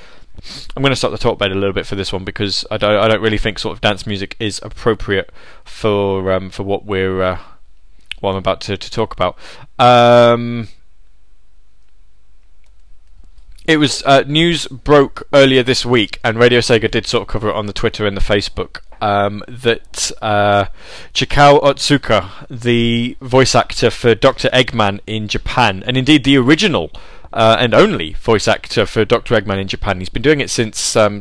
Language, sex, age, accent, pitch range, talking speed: English, male, 20-39, British, 100-120 Hz, 185 wpm